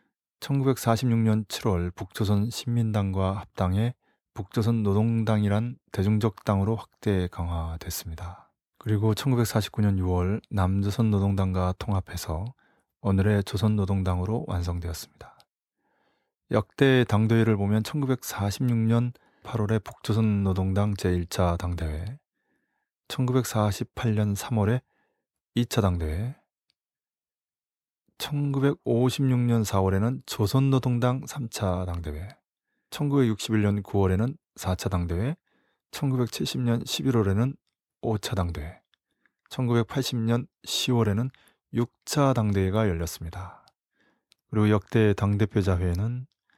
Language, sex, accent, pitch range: Korean, male, native, 95-120 Hz